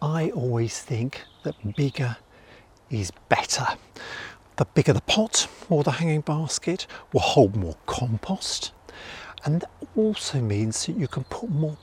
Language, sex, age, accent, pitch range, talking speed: English, male, 50-69, British, 120-160 Hz, 140 wpm